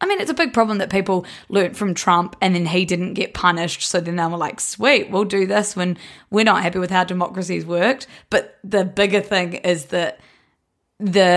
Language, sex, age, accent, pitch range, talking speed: English, female, 20-39, Australian, 175-210 Hz, 215 wpm